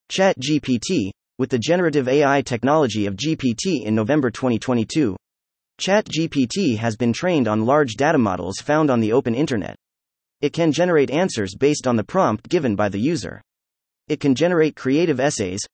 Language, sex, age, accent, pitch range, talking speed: English, male, 30-49, American, 110-160 Hz, 155 wpm